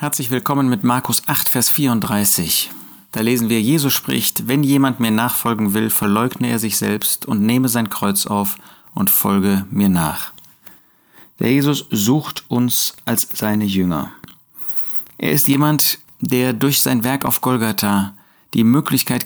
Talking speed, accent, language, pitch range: 150 wpm, German, German, 110-140 Hz